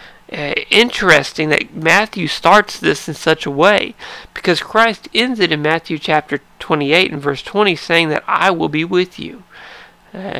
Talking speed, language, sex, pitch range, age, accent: 165 wpm, English, male, 155-195 Hz, 40-59, American